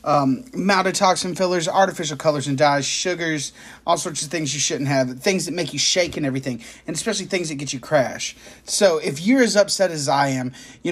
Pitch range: 145-200 Hz